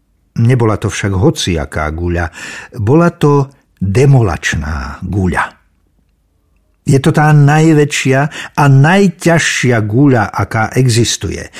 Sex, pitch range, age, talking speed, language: male, 110-145 Hz, 60-79, 95 wpm, Slovak